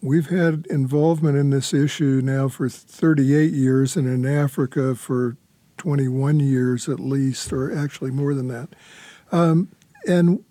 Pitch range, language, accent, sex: 140-165 Hz, English, American, male